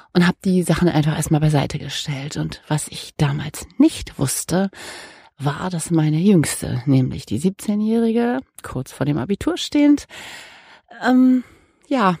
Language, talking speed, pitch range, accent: German, 140 wpm, 150-200 Hz, German